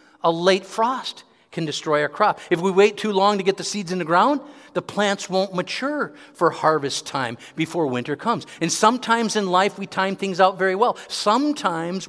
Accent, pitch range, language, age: American, 145-210 Hz, English, 50-69